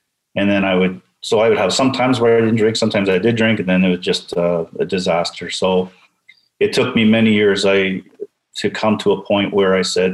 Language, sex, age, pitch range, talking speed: English, male, 40-59, 90-100 Hz, 235 wpm